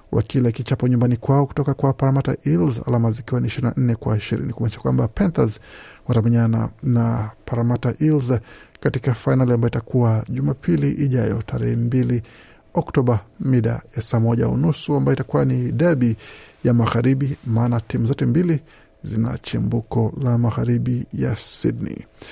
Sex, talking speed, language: male, 130 wpm, Swahili